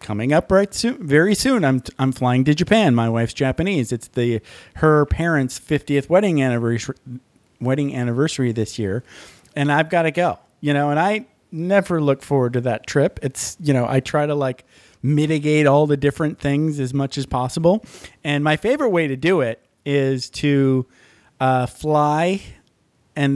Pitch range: 130-160 Hz